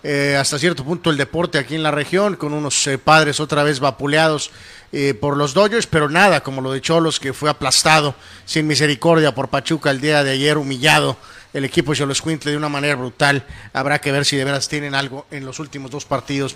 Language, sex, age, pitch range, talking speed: Spanish, male, 40-59, 140-165 Hz, 220 wpm